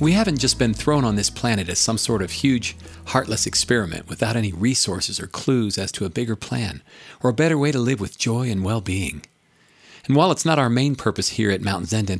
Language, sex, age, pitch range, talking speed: English, male, 40-59, 95-130 Hz, 225 wpm